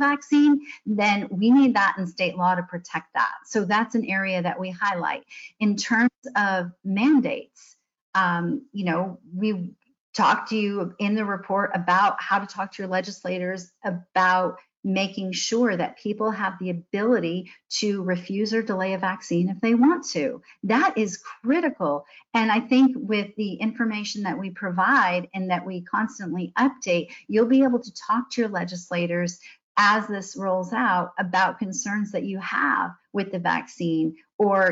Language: English